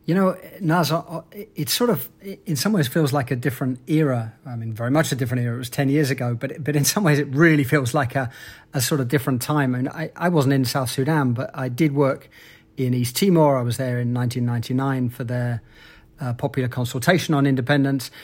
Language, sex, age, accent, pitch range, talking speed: English, male, 30-49, British, 125-155 Hz, 235 wpm